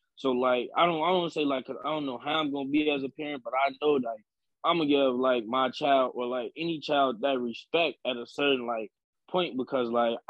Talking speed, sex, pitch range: 255 wpm, male, 125-145 Hz